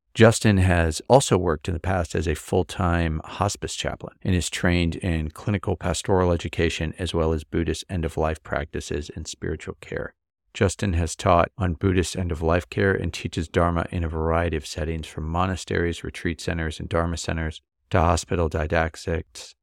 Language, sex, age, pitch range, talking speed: English, male, 40-59, 80-95 Hz, 160 wpm